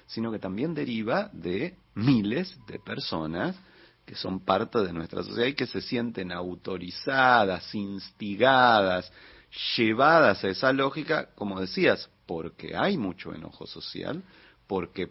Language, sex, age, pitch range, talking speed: Spanish, male, 40-59, 95-115 Hz, 125 wpm